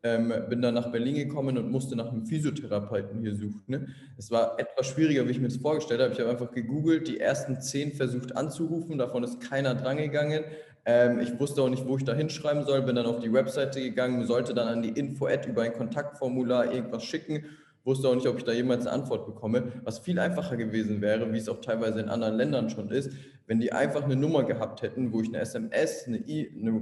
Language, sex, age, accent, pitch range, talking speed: German, male, 20-39, German, 115-135 Hz, 230 wpm